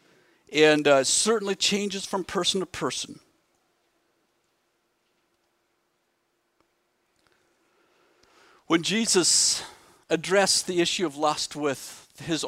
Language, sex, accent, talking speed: English, male, American, 80 wpm